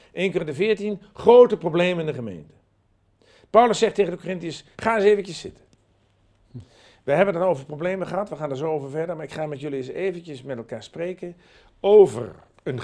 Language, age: Dutch, 50-69